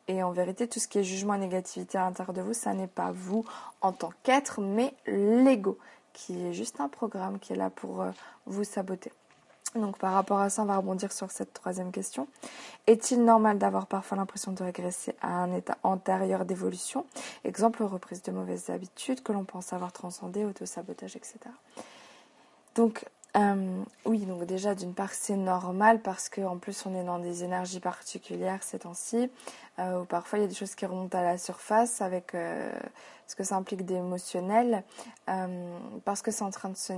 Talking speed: 195 wpm